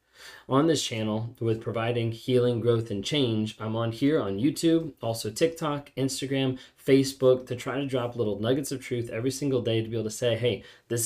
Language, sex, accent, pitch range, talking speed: English, male, American, 105-130 Hz, 195 wpm